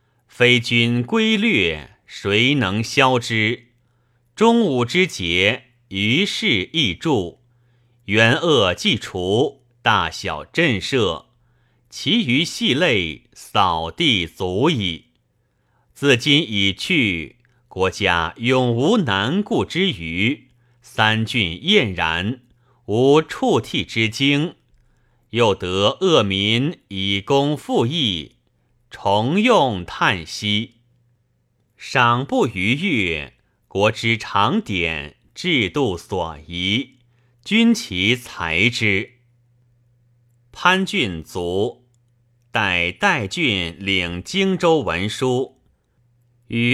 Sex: male